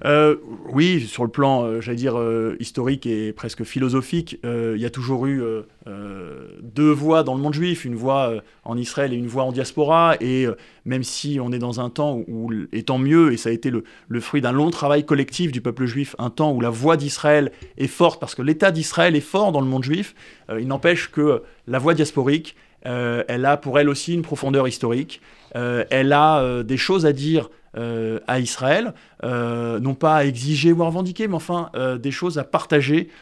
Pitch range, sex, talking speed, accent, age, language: 120-155 Hz, male, 225 wpm, French, 20-39, French